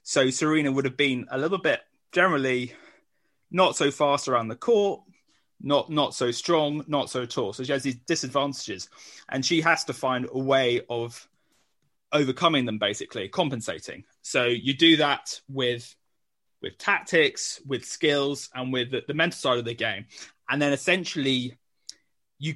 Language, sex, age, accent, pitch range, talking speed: English, male, 20-39, British, 125-150 Hz, 160 wpm